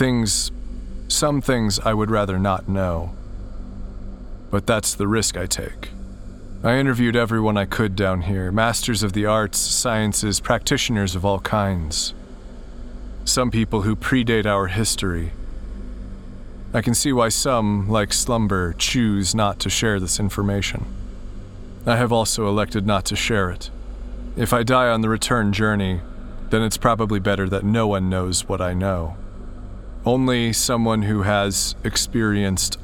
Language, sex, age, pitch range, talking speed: English, male, 30-49, 95-115 Hz, 145 wpm